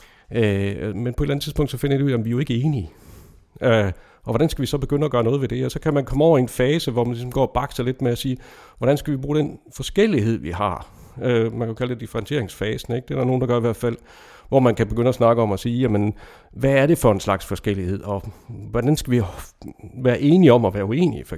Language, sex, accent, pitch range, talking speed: English, male, Danish, 105-140 Hz, 280 wpm